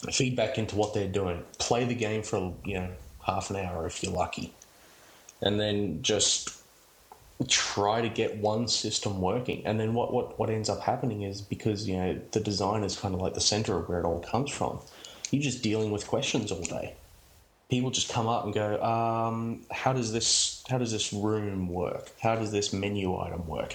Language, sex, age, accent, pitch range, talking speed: Finnish, male, 20-39, Australian, 95-115 Hz, 200 wpm